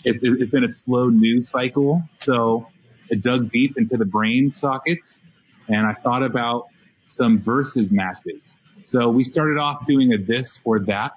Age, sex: 30-49, male